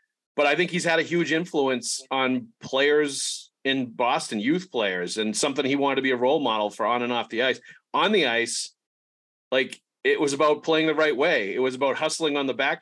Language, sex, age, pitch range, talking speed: English, male, 40-59, 115-145 Hz, 220 wpm